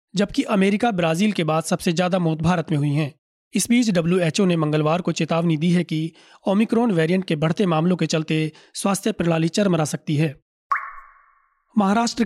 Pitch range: 160-195 Hz